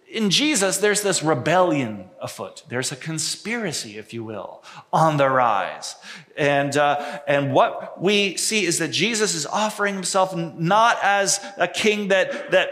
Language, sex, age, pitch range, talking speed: English, male, 30-49, 135-210 Hz, 155 wpm